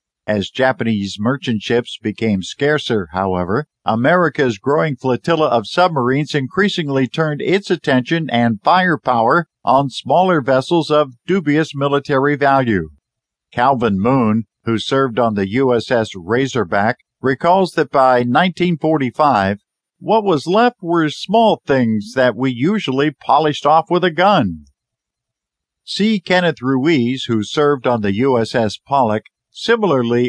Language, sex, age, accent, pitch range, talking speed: English, male, 50-69, American, 115-160 Hz, 120 wpm